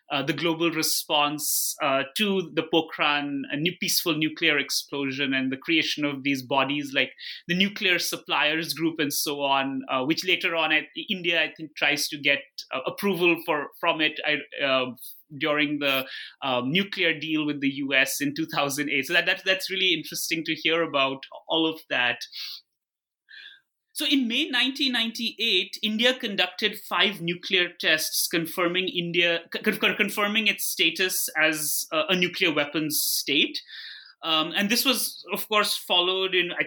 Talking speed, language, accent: 165 wpm, English, Indian